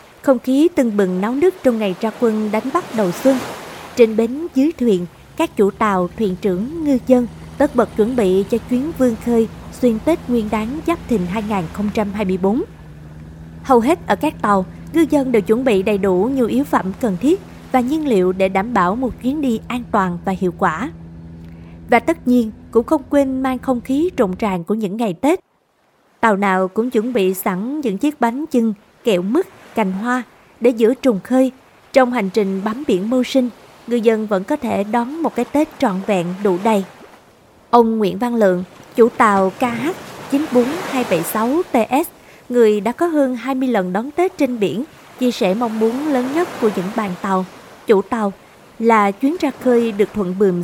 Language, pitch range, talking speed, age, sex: Vietnamese, 200-260 Hz, 190 wpm, 20-39, female